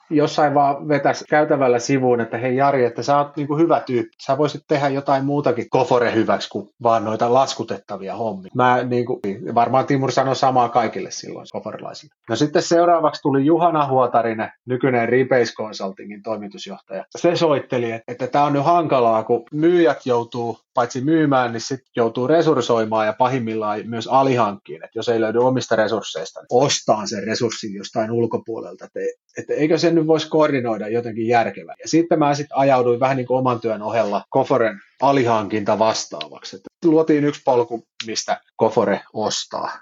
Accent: native